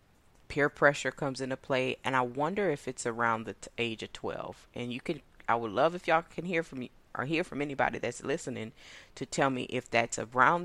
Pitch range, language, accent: 115-140 Hz, English, American